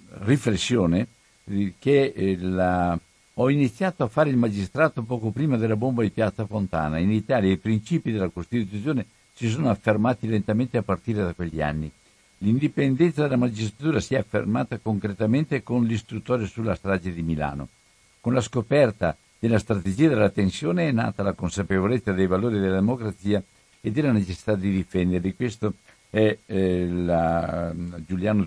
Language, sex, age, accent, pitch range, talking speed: Italian, male, 60-79, native, 95-120 Hz, 150 wpm